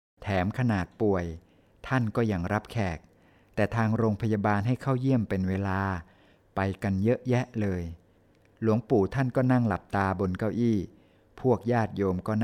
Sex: male